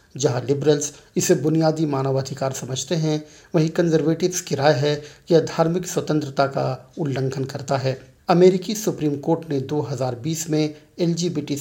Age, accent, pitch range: 50-69, native, 135-155 Hz